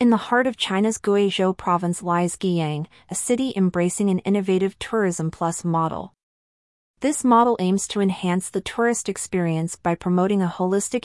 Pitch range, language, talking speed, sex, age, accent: 175-210 Hz, English, 155 wpm, female, 30-49, American